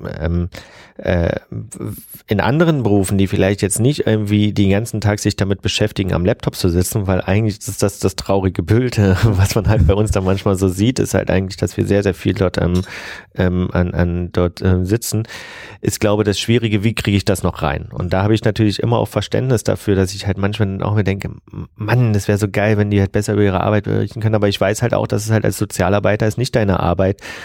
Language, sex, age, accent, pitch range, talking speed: German, male, 30-49, German, 95-110 Hz, 240 wpm